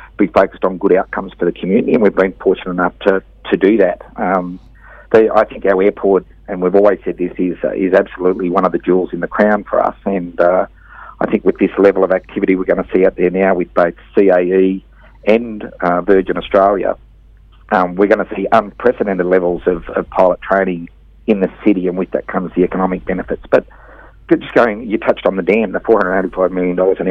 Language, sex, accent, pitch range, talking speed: English, male, Australian, 90-95 Hz, 215 wpm